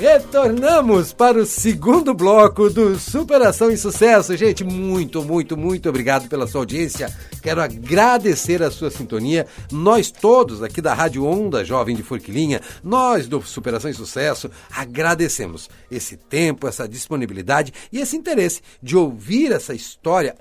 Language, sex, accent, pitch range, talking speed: Portuguese, male, Brazilian, 135-205 Hz, 140 wpm